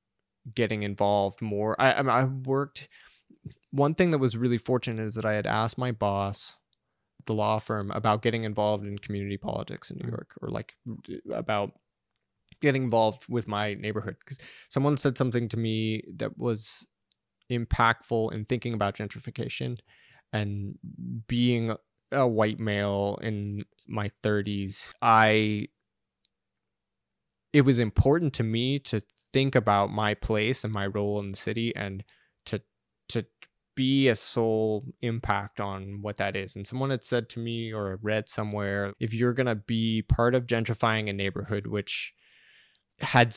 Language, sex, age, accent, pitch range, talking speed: English, male, 20-39, American, 100-120 Hz, 150 wpm